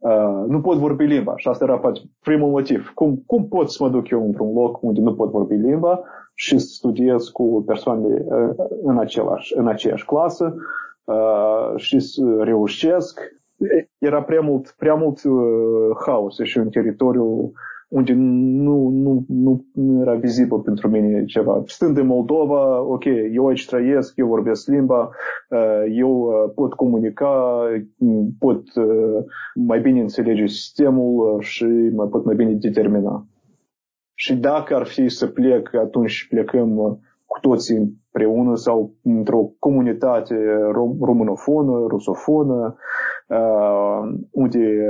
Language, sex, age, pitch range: Romanian, male, 30-49, 110-135 Hz